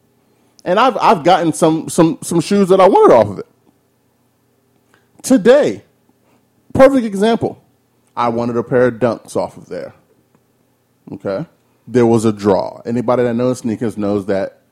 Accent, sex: American, male